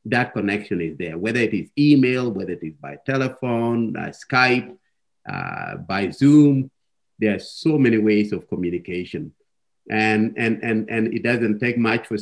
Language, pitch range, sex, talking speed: English, 105-130 Hz, male, 165 wpm